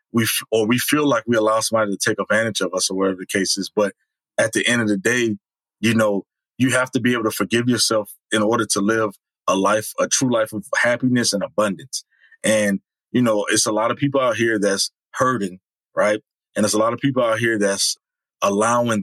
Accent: American